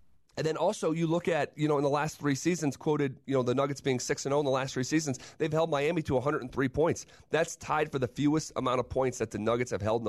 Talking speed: 270 wpm